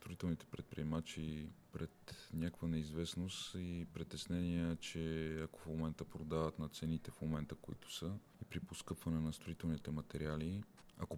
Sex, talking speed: male, 135 wpm